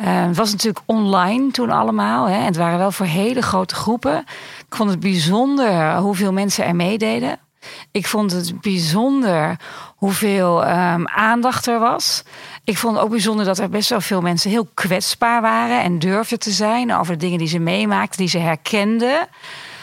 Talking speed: 180 wpm